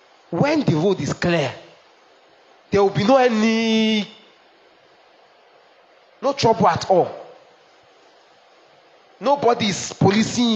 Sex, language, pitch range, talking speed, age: male, English, 150-220 Hz, 95 wpm, 30-49